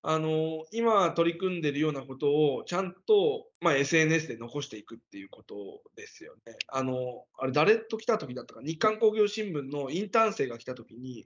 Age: 20-39